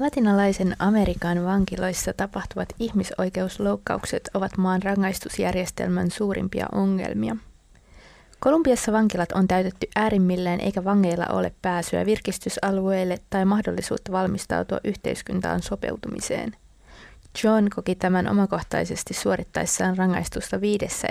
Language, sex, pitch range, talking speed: Finnish, female, 180-210 Hz, 90 wpm